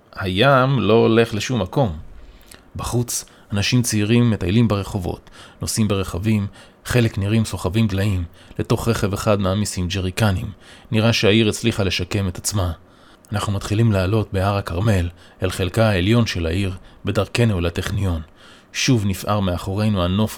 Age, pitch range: 20-39, 95-115 Hz